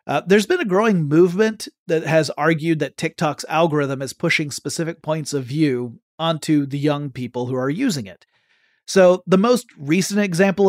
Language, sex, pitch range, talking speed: English, male, 145-190 Hz, 175 wpm